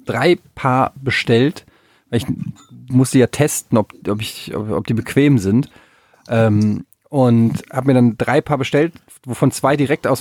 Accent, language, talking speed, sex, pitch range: German, German, 165 wpm, male, 120-150 Hz